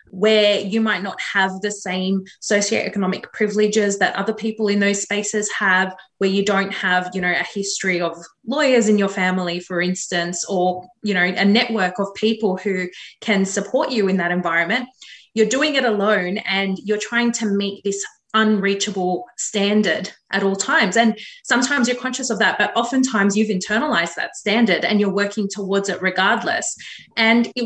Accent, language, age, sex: Australian, English, 20-39, female